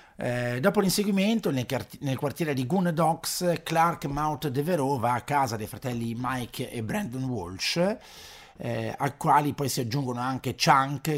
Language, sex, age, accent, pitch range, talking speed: Italian, male, 50-69, native, 105-135 Hz, 150 wpm